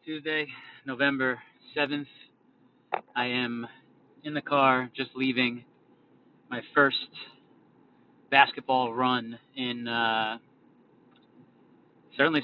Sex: male